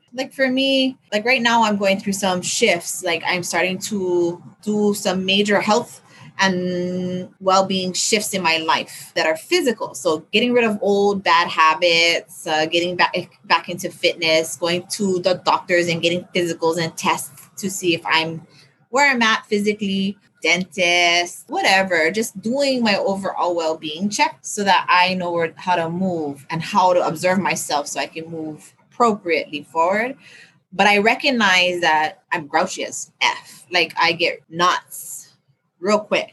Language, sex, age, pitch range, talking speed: English, female, 20-39, 170-220 Hz, 165 wpm